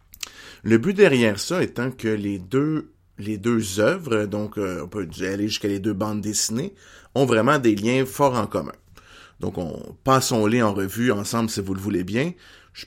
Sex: male